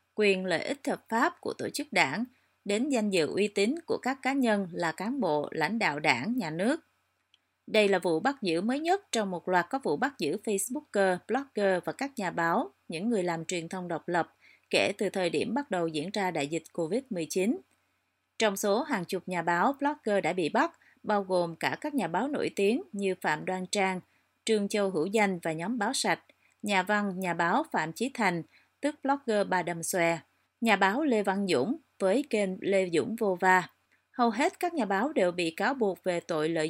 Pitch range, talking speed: 180-245 Hz, 210 wpm